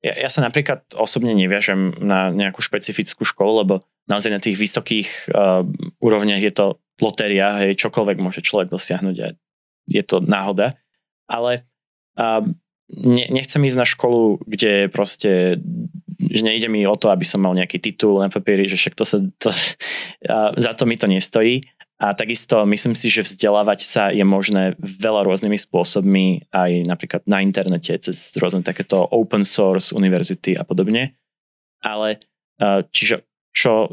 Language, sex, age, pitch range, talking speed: Slovak, male, 20-39, 95-115 Hz, 155 wpm